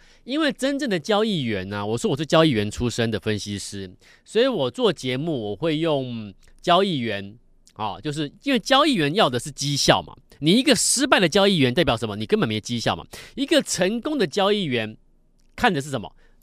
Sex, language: male, Chinese